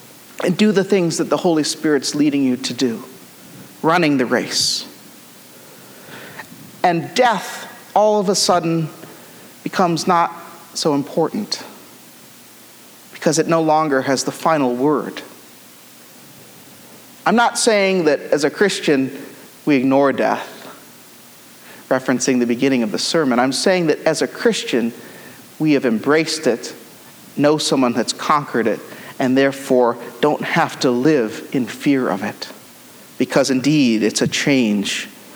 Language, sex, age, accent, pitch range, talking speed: English, male, 40-59, American, 125-165 Hz, 135 wpm